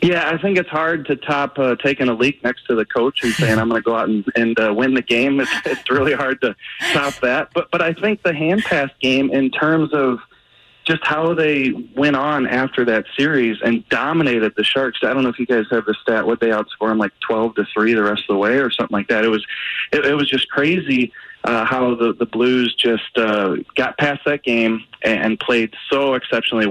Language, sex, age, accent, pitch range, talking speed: English, male, 30-49, American, 110-140 Hz, 235 wpm